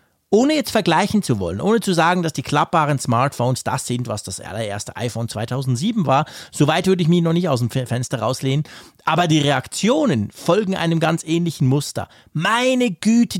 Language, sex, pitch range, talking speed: German, male, 130-190 Hz, 180 wpm